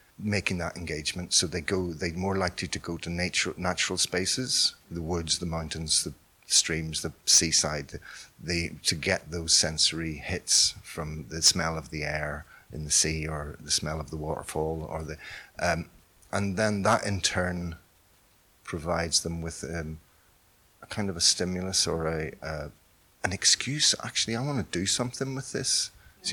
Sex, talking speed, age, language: male, 175 wpm, 40-59, Czech